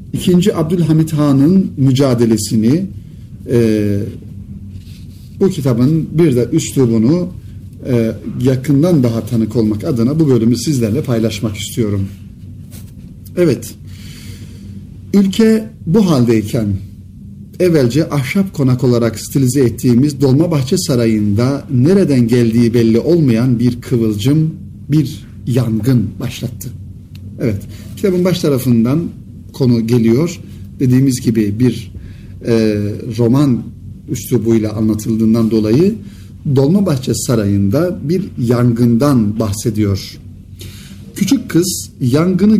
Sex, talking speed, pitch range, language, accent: male, 90 wpm, 105-145 Hz, Turkish, native